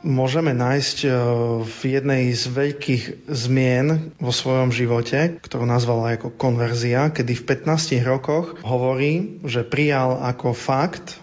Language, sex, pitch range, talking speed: Slovak, male, 120-145 Hz, 125 wpm